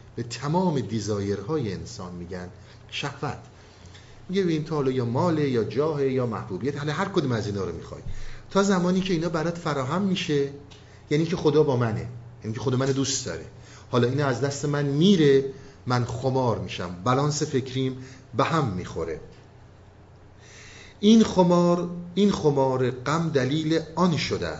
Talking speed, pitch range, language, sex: 155 wpm, 105-140 Hz, Persian, male